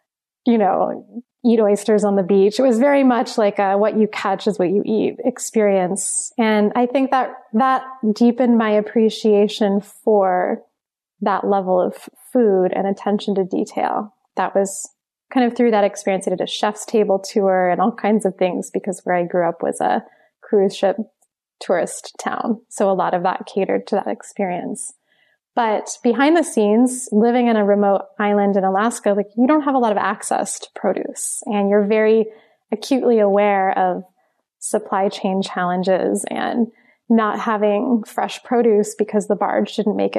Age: 20-39